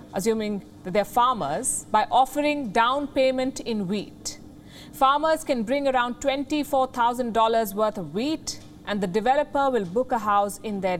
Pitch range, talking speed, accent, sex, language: 205-265 Hz, 145 wpm, Indian, female, English